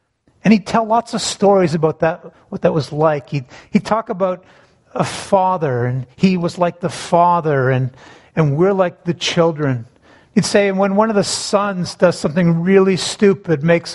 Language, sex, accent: English, male, American